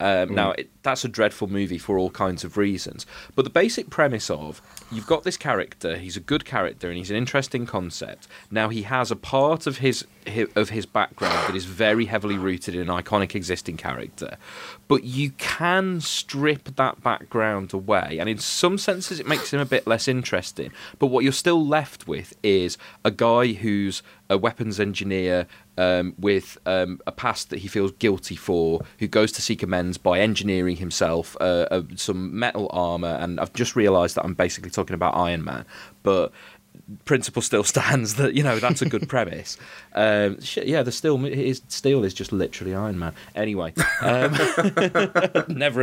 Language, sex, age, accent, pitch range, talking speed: English, male, 30-49, British, 95-130 Hz, 185 wpm